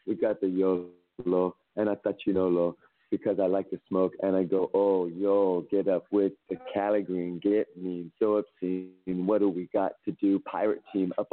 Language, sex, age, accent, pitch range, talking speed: English, male, 40-59, American, 90-100 Hz, 200 wpm